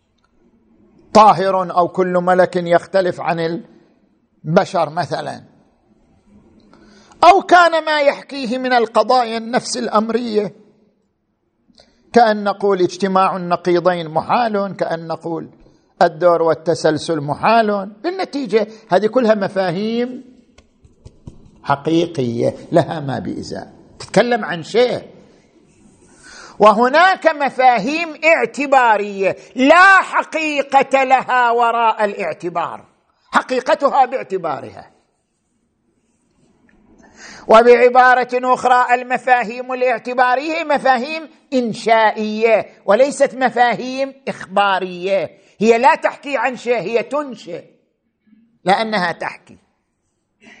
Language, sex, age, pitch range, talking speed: Arabic, male, 50-69, 190-260 Hz, 75 wpm